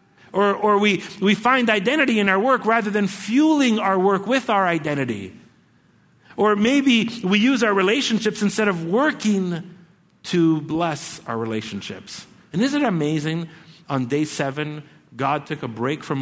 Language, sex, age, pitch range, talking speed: English, male, 50-69, 130-185 Hz, 155 wpm